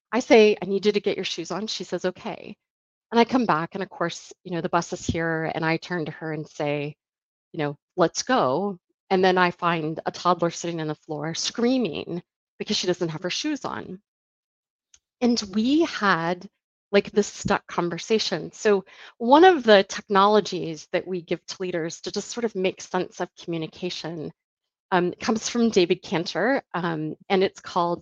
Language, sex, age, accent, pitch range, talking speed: English, female, 30-49, American, 170-220 Hz, 195 wpm